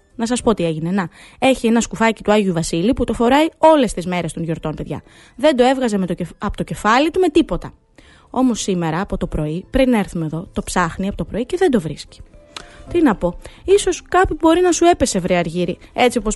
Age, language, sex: 20-39, Greek, female